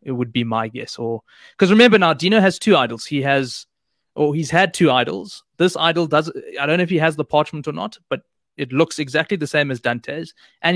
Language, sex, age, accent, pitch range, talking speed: English, male, 20-39, South African, 135-175 Hz, 230 wpm